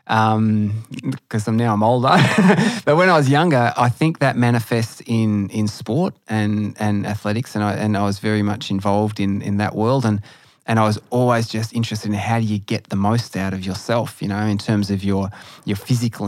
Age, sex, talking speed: 20-39, male, 215 wpm